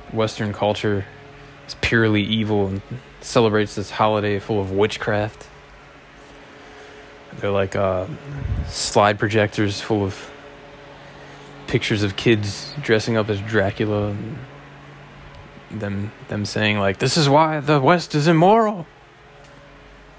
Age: 20-39